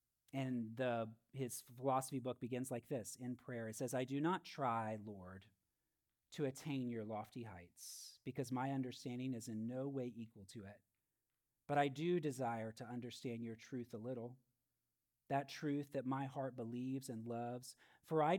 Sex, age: male, 40-59